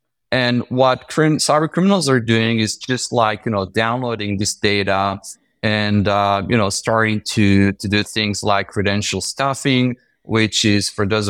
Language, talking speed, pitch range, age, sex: English, 165 wpm, 105-120 Hz, 30-49, male